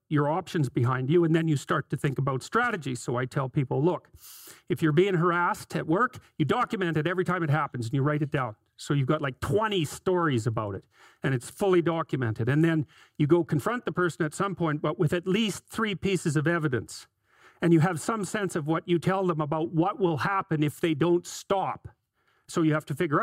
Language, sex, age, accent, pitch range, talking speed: English, male, 40-59, American, 150-185 Hz, 225 wpm